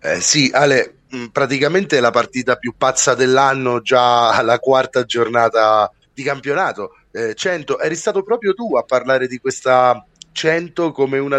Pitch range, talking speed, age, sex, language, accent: 130-165 Hz, 155 wpm, 30-49, male, Italian, native